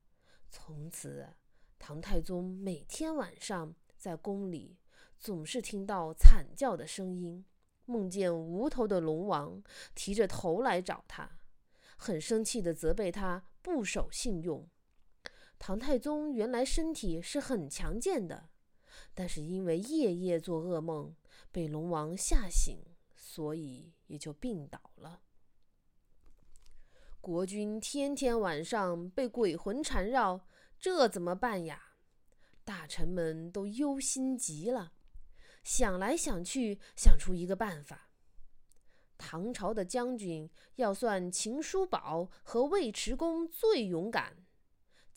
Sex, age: female, 20-39